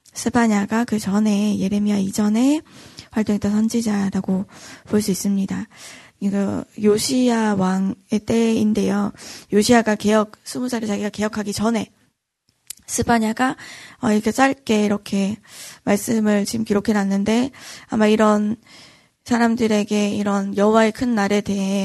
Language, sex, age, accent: Korean, female, 20-39, native